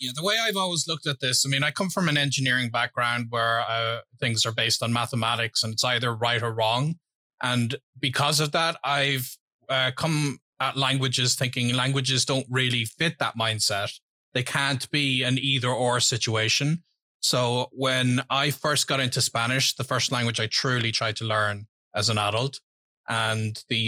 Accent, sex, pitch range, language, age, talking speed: Irish, male, 115-140 Hz, English, 30-49, 180 wpm